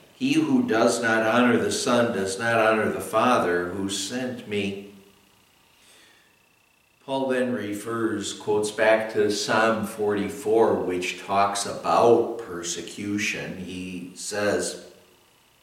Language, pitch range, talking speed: English, 105-130 Hz, 110 wpm